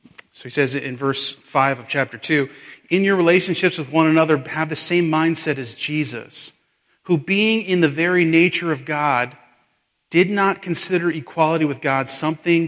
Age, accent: 40-59, American